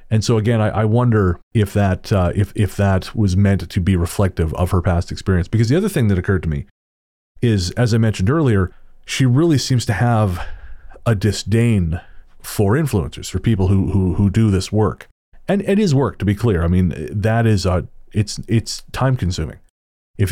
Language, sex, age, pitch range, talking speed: English, male, 30-49, 90-115 Hz, 200 wpm